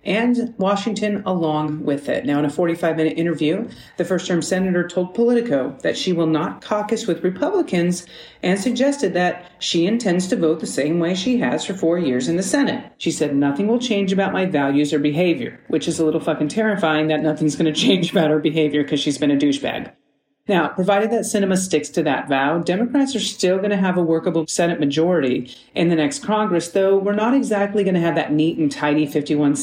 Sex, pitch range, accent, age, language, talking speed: female, 150-205 Hz, American, 40-59, English, 210 wpm